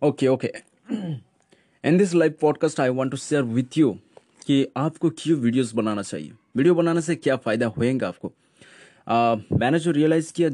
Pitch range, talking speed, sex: 120-150 Hz, 170 wpm, male